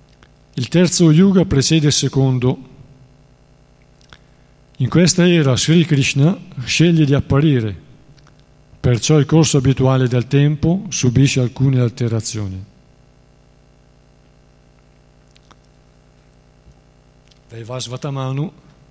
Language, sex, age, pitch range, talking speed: Italian, male, 50-69, 125-145 Hz, 75 wpm